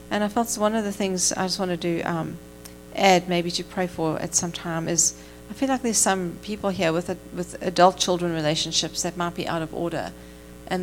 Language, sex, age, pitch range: English, female, 40-59, 155-190 Hz